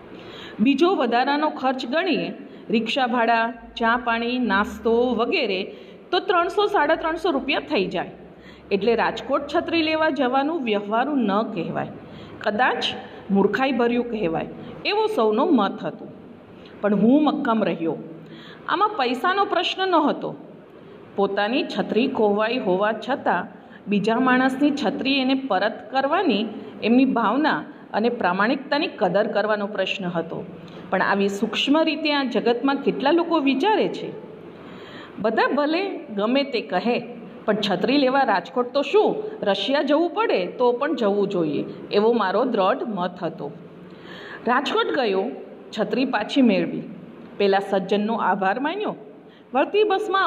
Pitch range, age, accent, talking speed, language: 215-305 Hz, 50-69, native, 125 wpm, Gujarati